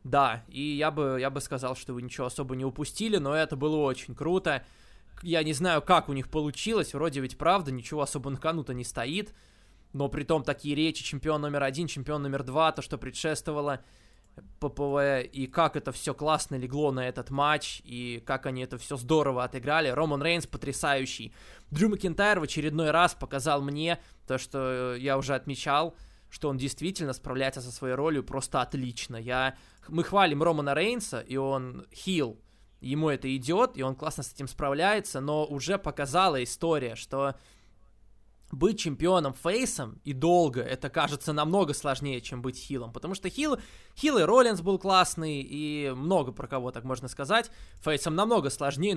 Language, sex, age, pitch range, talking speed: Russian, male, 20-39, 130-160 Hz, 170 wpm